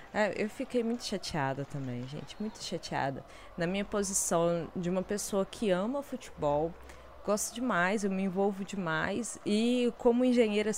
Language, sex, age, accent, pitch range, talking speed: Portuguese, female, 20-39, Brazilian, 170-205 Hz, 150 wpm